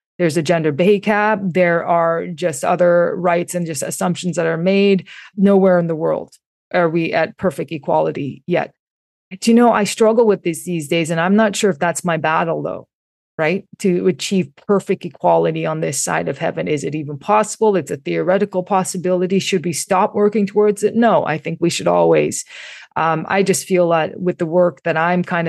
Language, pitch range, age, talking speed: English, 160-185 Hz, 20-39, 200 wpm